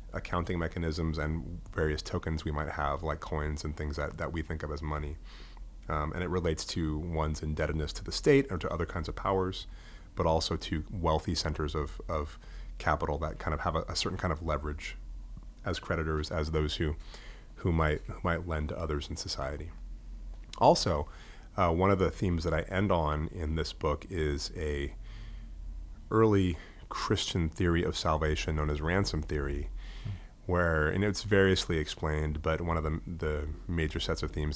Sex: male